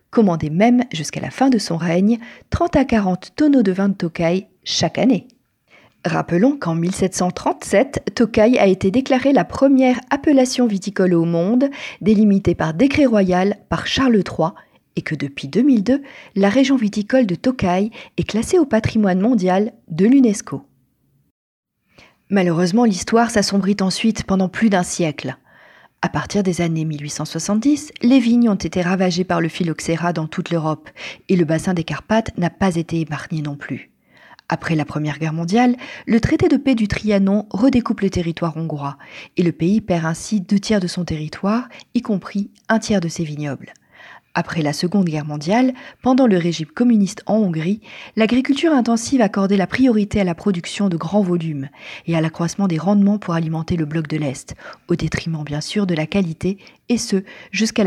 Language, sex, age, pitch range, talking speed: French, female, 40-59, 165-230 Hz, 170 wpm